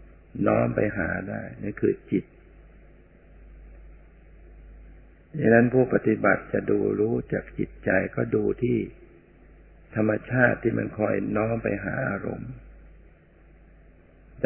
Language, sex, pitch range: Thai, male, 85-110 Hz